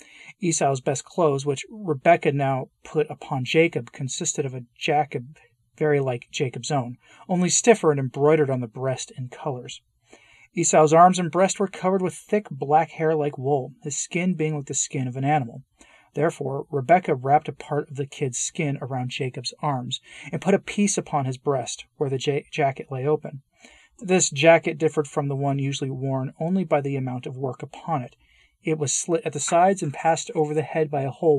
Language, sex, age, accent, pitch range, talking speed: English, male, 40-59, American, 135-165 Hz, 195 wpm